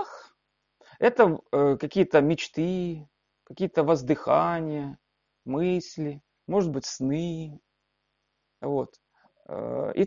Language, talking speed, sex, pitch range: Russian, 60 wpm, male, 145-235 Hz